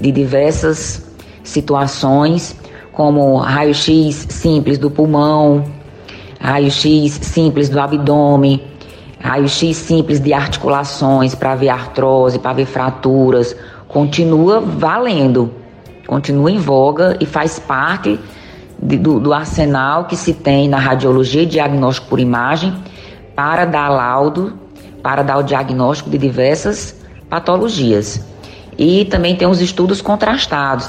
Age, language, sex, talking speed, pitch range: 20-39, Portuguese, female, 115 wpm, 125-150 Hz